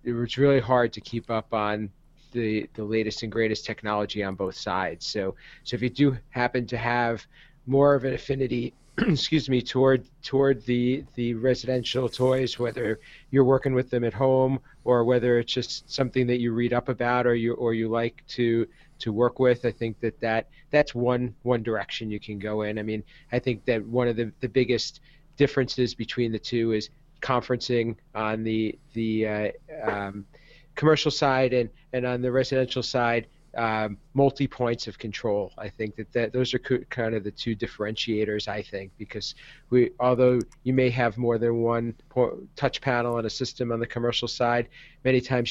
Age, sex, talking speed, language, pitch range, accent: 40-59, male, 190 wpm, English, 110-130 Hz, American